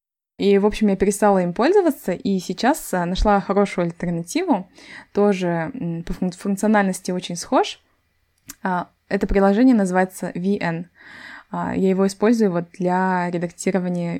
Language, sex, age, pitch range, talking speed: Russian, female, 20-39, 175-215 Hz, 110 wpm